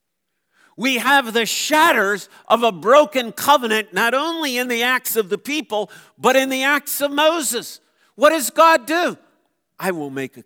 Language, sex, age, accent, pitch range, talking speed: English, male, 50-69, American, 210-275 Hz, 170 wpm